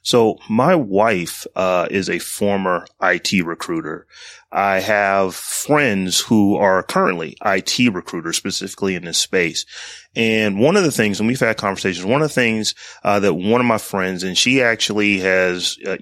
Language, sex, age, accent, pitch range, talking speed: English, male, 30-49, American, 95-120 Hz, 180 wpm